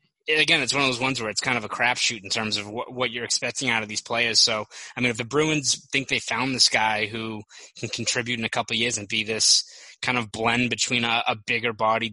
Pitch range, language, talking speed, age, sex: 110-120 Hz, English, 250 wpm, 20-39, male